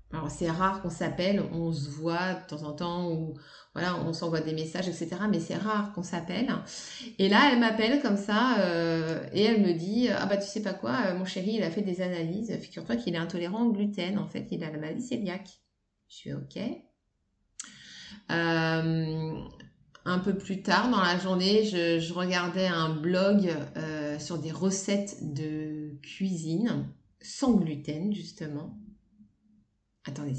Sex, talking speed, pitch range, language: female, 175 wpm, 165-210 Hz, French